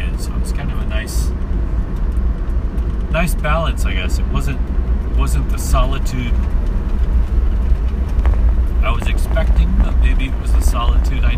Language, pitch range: English, 65-70 Hz